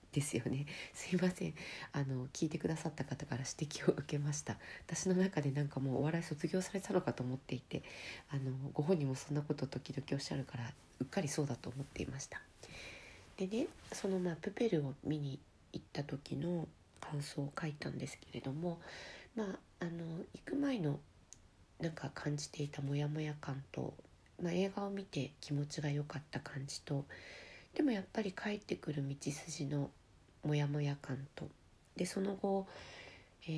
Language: Japanese